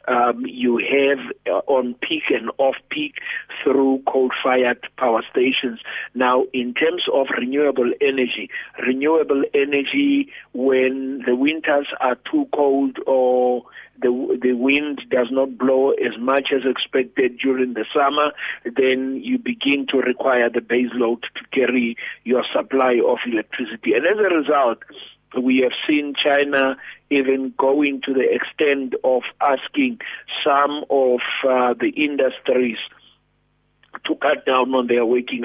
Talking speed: 135 wpm